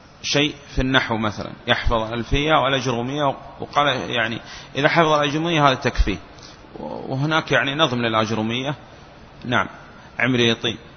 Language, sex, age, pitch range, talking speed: Arabic, male, 30-49, 120-145 Hz, 110 wpm